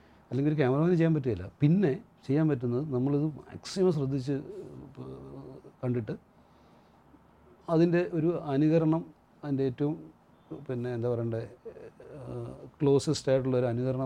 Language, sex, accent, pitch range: English, male, Indian, 125-165 Hz